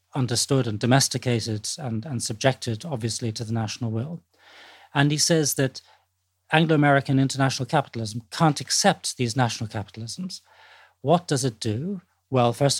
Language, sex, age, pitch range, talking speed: English, male, 40-59, 115-145 Hz, 135 wpm